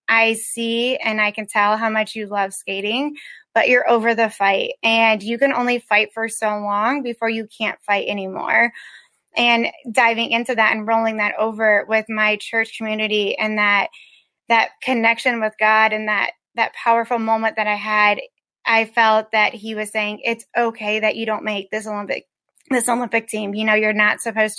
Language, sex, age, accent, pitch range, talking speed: English, female, 20-39, American, 215-230 Hz, 190 wpm